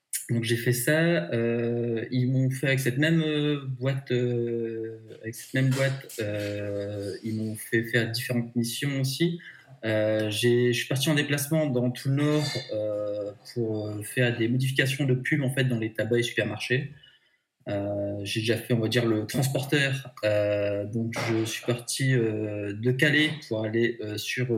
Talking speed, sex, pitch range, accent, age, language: 175 wpm, male, 110-140 Hz, French, 20-39, French